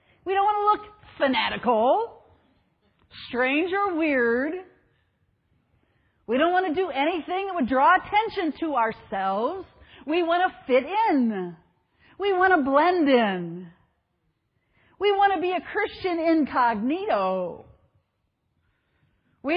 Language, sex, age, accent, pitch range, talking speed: English, female, 50-69, American, 235-330 Hz, 120 wpm